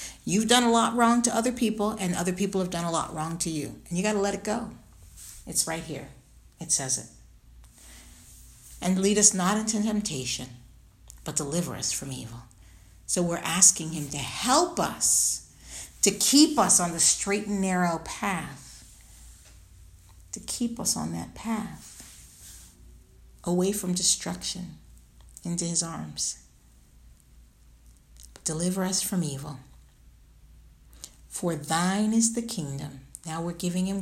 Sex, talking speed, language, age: female, 145 wpm, English, 50-69